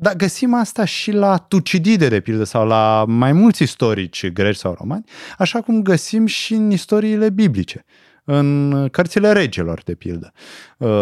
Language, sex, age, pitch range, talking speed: Romanian, male, 30-49, 110-165 Hz, 150 wpm